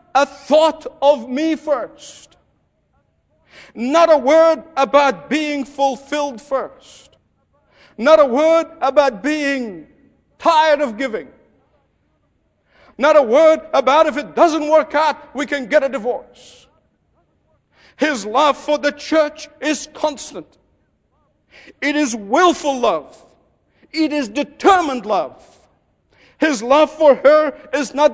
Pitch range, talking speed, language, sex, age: 230-300 Hz, 115 wpm, English, male, 60-79